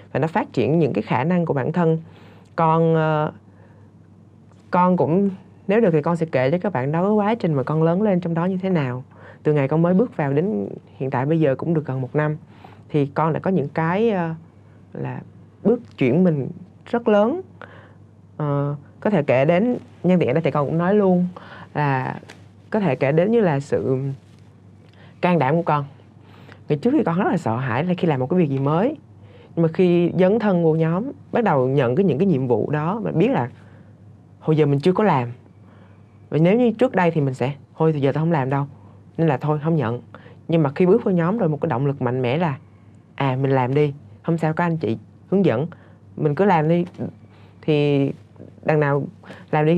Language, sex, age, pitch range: Vietnamese, female, 20-39, 115-170 Hz